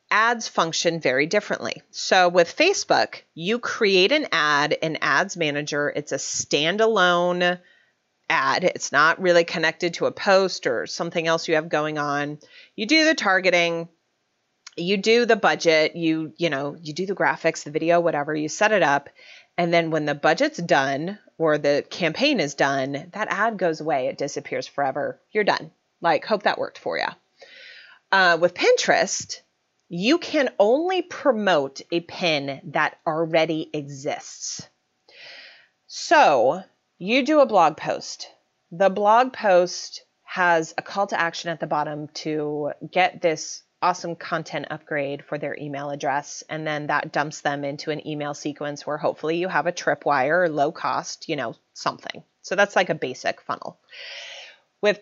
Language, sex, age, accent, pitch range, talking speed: English, female, 30-49, American, 150-200 Hz, 160 wpm